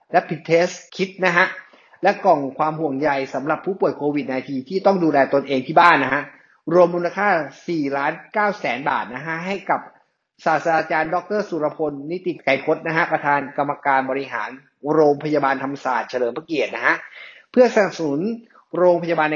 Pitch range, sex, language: 145-190 Hz, male, English